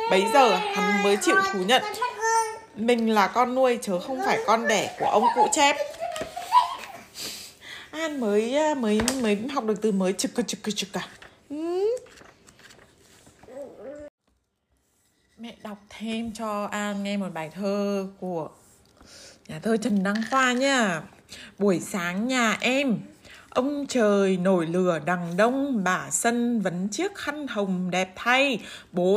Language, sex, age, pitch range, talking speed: Vietnamese, female, 20-39, 200-285 Hz, 140 wpm